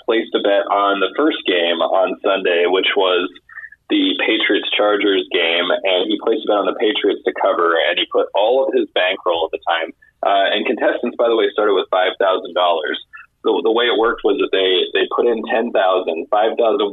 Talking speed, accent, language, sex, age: 195 wpm, American, English, male, 20-39